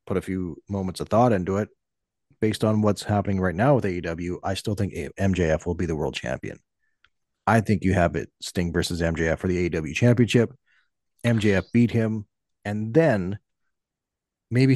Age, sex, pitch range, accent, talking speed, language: 30-49, male, 90-120 Hz, American, 175 wpm, English